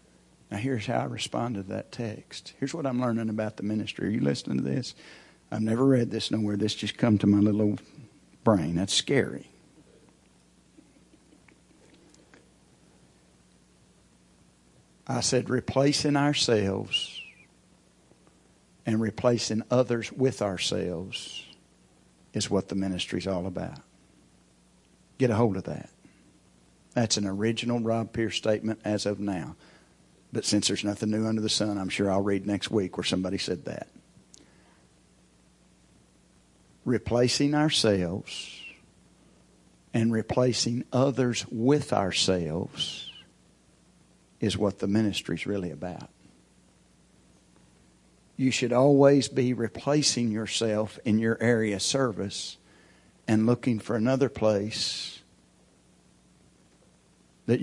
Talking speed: 120 wpm